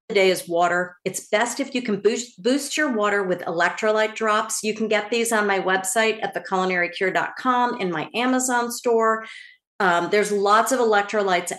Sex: female